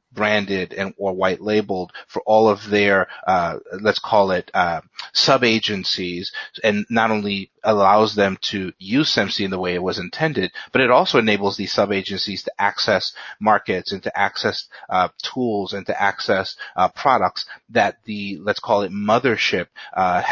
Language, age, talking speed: English, 30-49, 170 wpm